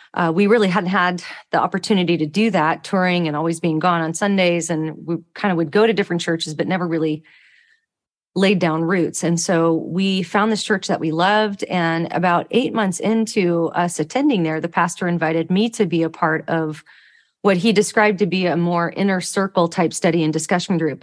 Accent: American